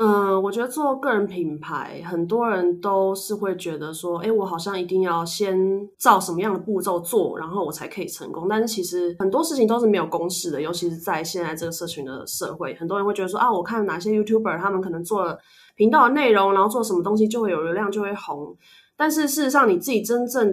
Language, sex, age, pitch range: Chinese, female, 20-39, 175-230 Hz